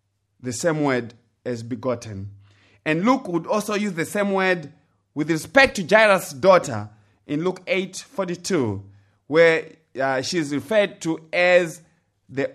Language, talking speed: English, 140 wpm